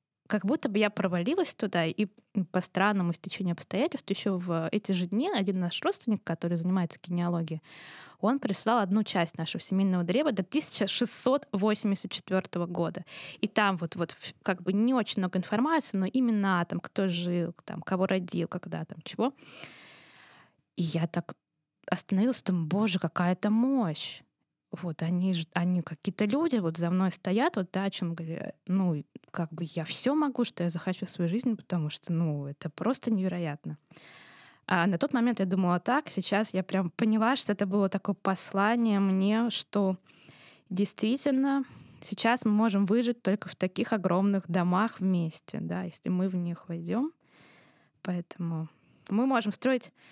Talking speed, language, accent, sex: 160 wpm, Russian, native, female